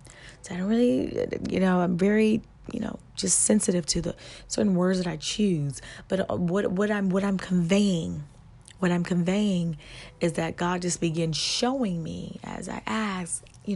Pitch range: 125-185 Hz